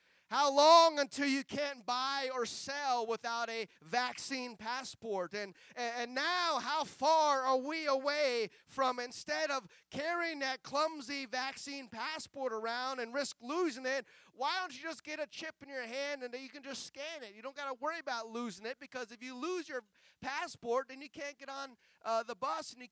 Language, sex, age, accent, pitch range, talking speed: English, male, 30-49, American, 205-275 Hz, 195 wpm